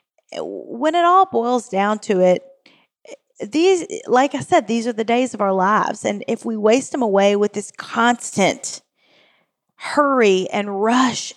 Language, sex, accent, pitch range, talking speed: English, female, American, 195-260 Hz, 160 wpm